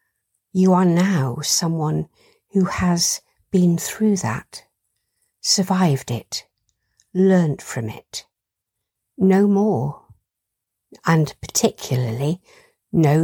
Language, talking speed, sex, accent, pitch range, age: English, 85 wpm, female, British, 130-190 Hz, 50-69